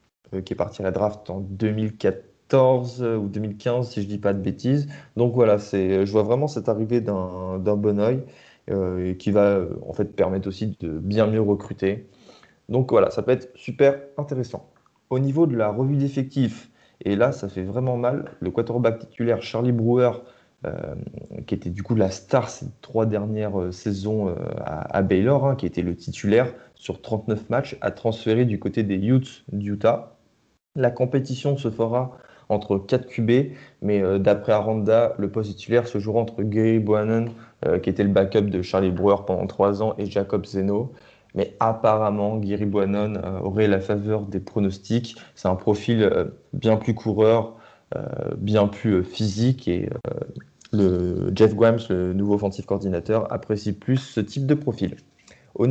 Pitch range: 100-120 Hz